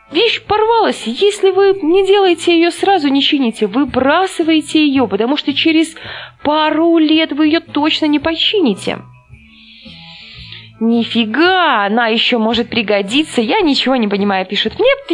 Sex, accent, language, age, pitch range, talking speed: female, native, Russian, 20-39, 205-320 Hz, 130 wpm